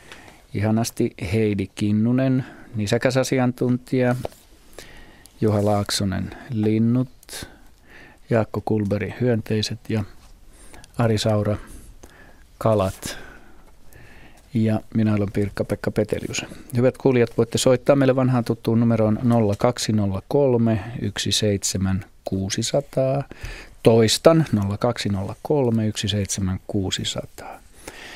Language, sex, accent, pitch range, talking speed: Finnish, male, native, 105-120 Hz, 65 wpm